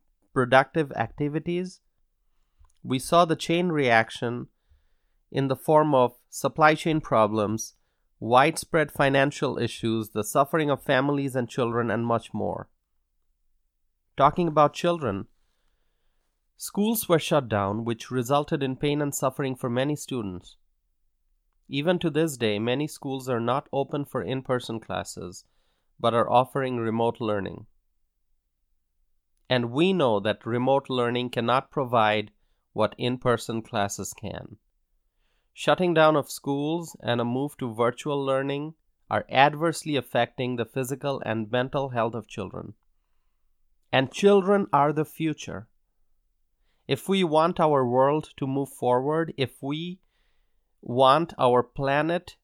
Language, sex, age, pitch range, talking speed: English, male, 30-49, 105-150 Hz, 125 wpm